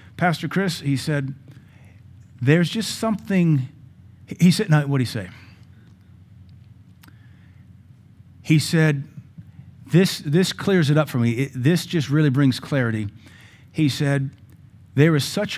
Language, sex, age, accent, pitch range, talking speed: English, male, 40-59, American, 115-145 Hz, 125 wpm